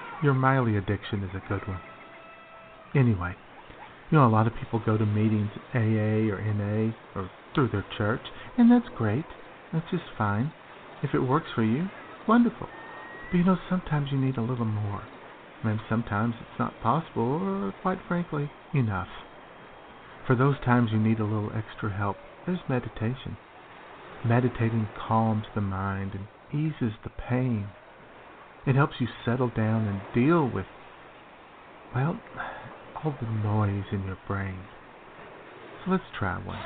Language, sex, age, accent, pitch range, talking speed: English, male, 60-79, American, 105-140 Hz, 150 wpm